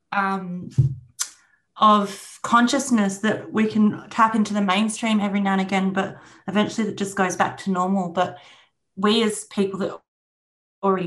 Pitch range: 180-205 Hz